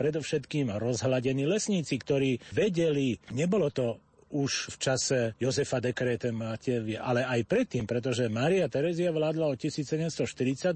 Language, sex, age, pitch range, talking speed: Slovak, male, 40-59, 120-160 Hz, 125 wpm